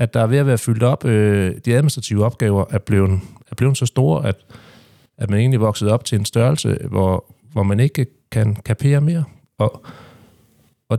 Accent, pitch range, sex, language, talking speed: native, 105-135 Hz, male, Danish, 190 wpm